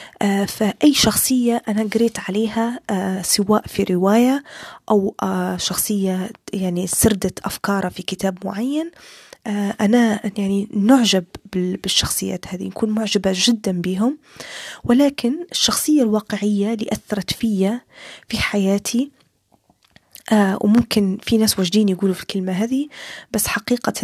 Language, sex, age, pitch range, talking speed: Arabic, female, 20-39, 200-240 Hz, 105 wpm